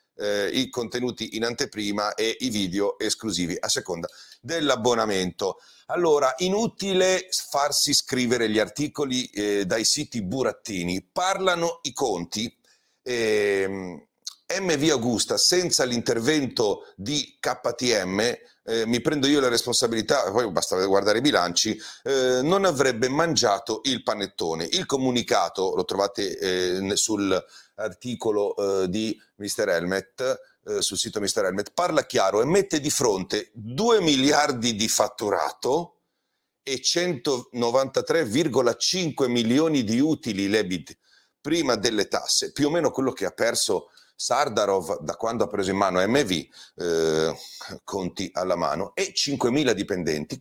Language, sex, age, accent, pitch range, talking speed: Italian, male, 40-59, native, 105-175 Hz, 125 wpm